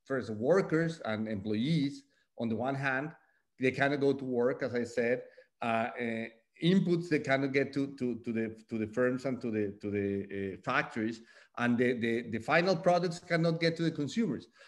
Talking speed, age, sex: 190 wpm, 40-59, male